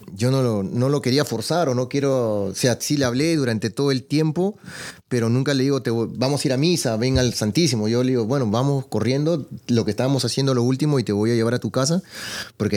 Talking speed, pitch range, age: 255 wpm, 105-130 Hz, 30-49